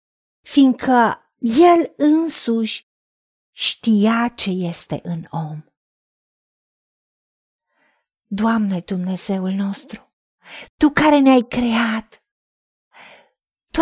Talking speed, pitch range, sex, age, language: 70 wpm, 225-275 Hz, female, 40-59, Romanian